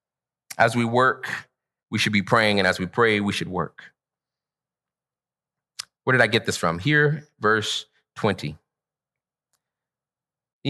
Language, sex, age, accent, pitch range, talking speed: English, male, 30-49, American, 135-205 Hz, 130 wpm